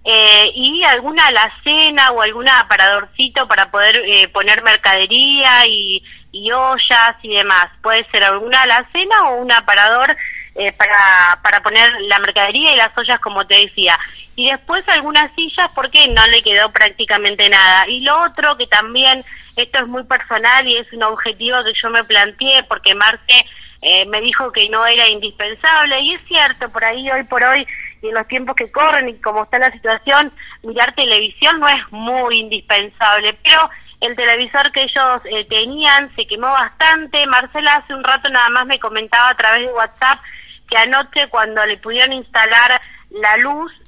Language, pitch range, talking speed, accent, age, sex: Spanish, 215-270 Hz, 175 wpm, Argentinian, 20-39, female